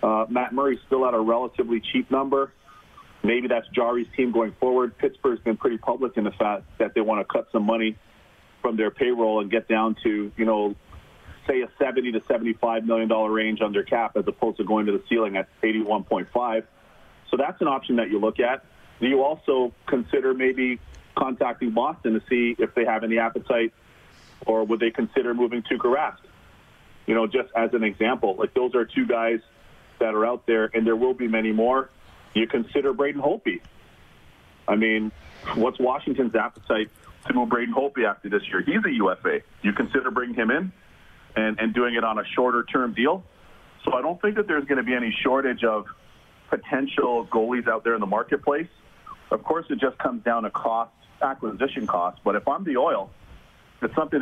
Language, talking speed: English, 195 wpm